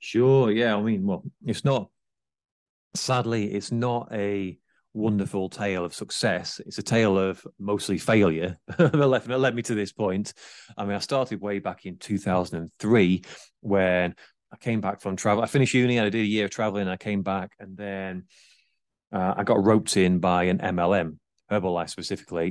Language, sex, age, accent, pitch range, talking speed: English, male, 30-49, British, 95-115 Hz, 180 wpm